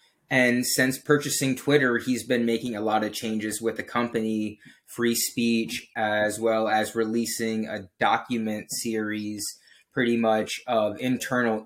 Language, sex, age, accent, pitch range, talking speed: English, male, 20-39, American, 110-120 Hz, 140 wpm